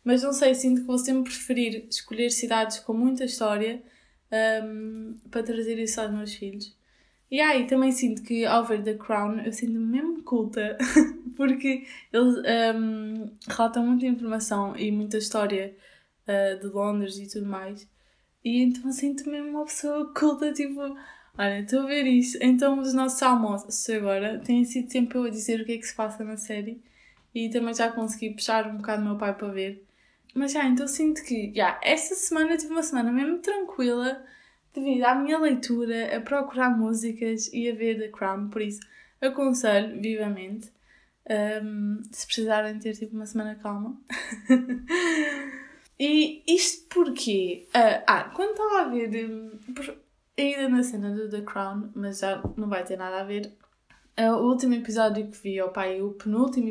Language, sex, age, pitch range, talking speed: Portuguese, female, 20-39, 215-260 Hz, 175 wpm